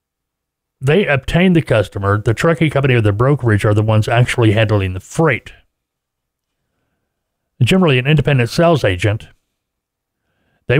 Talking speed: 130 wpm